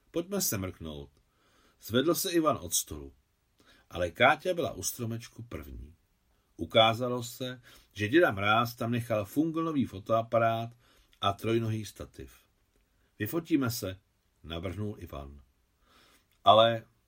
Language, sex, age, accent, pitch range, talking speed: Czech, male, 50-69, native, 95-125 Hz, 110 wpm